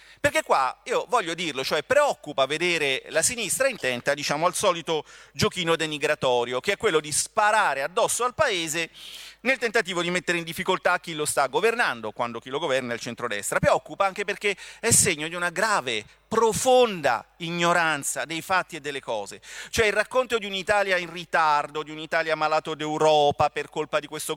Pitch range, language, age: 155-235 Hz, Italian, 40-59